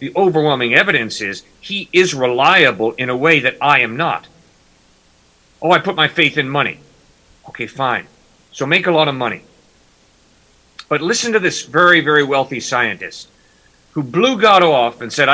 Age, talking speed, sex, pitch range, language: 50-69, 170 wpm, male, 120-175 Hz, English